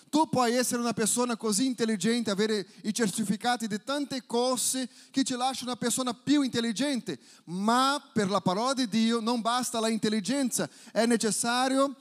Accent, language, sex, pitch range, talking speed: Brazilian, Italian, male, 210-260 Hz, 155 wpm